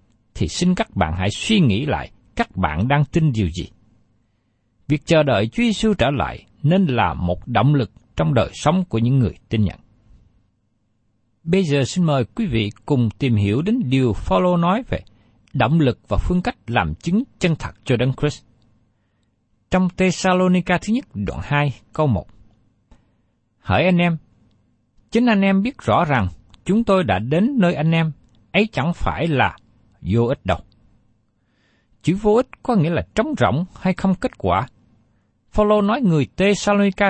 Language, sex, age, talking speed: Vietnamese, male, 60-79, 175 wpm